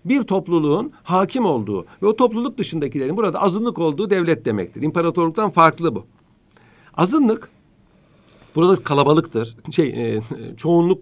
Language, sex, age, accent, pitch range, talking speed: Turkish, male, 60-79, native, 140-200 Hz, 120 wpm